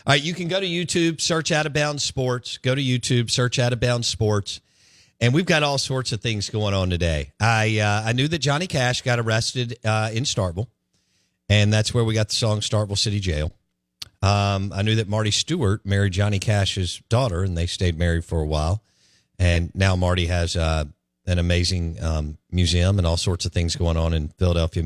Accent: American